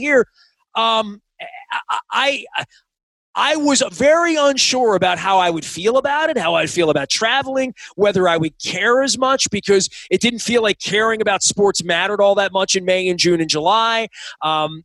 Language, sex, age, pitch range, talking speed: English, male, 30-49, 180-240 Hz, 180 wpm